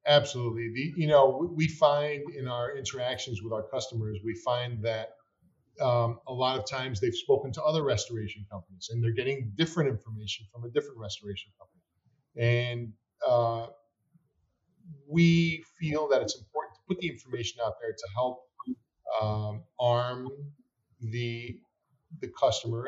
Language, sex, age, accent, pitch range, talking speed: English, male, 40-59, American, 115-145 Hz, 145 wpm